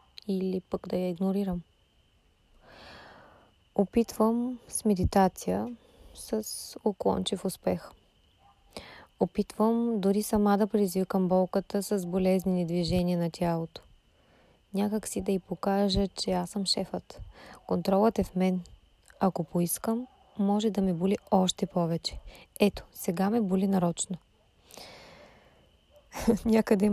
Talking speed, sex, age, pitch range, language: 110 wpm, female, 20-39, 180-210 Hz, Bulgarian